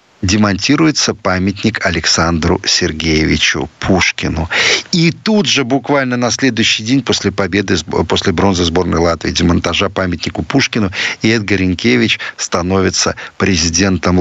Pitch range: 90-130 Hz